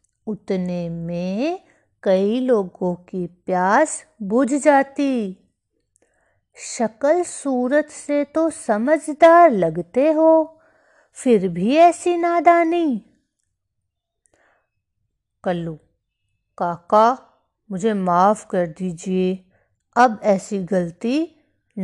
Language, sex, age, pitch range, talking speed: Hindi, female, 50-69, 180-275 Hz, 75 wpm